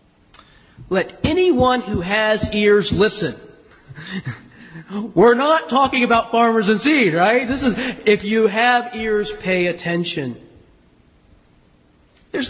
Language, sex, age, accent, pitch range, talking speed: English, male, 40-59, American, 160-220 Hz, 110 wpm